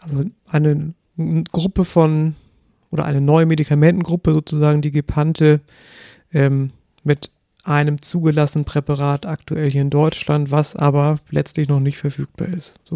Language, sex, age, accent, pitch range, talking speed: German, male, 40-59, German, 150-170 Hz, 130 wpm